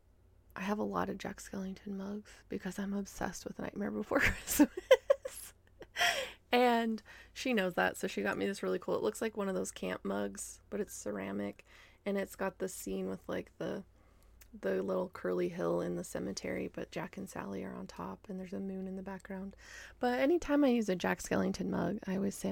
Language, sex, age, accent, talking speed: English, female, 20-39, American, 205 wpm